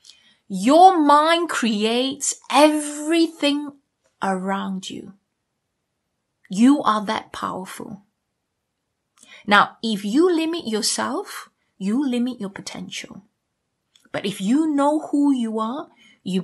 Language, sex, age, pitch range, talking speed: English, female, 30-49, 200-295 Hz, 100 wpm